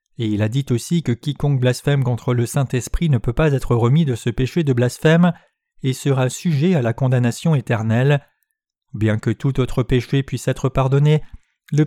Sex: male